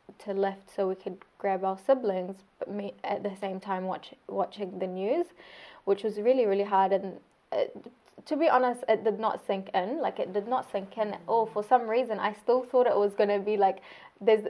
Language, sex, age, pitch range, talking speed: English, female, 10-29, 195-225 Hz, 215 wpm